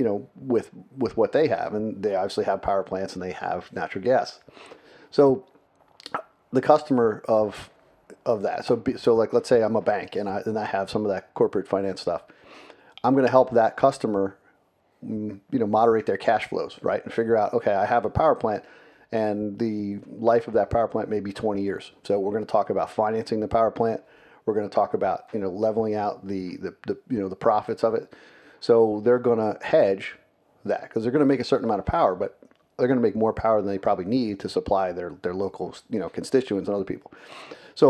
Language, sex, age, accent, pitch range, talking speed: English, male, 40-59, American, 100-120 Hz, 225 wpm